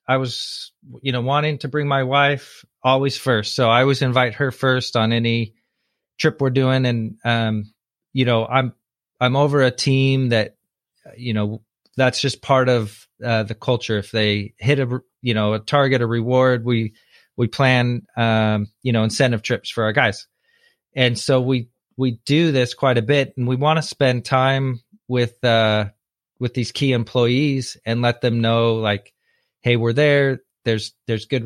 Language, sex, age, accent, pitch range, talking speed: English, male, 30-49, American, 115-135 Hz, 180 wpm